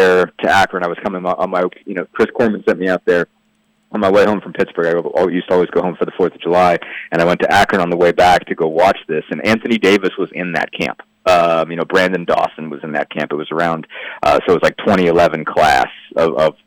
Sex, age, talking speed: male, 30-49, 260 wpm